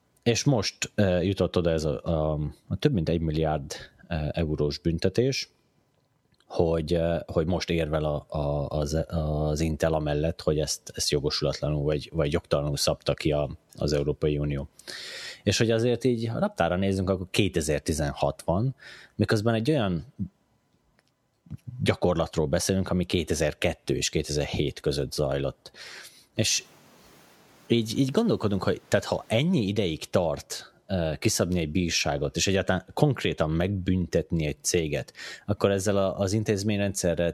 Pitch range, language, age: 75-95 Hz, Hungarian, 30-49